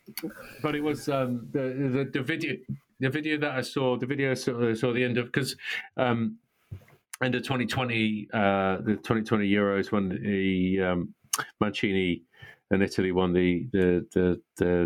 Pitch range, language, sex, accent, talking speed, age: 95-125 Hz, English, male, British, 170 wpm, 40-59